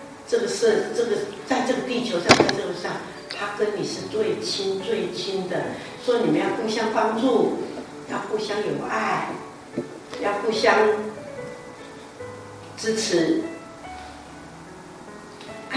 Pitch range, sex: 240-325 Hz, female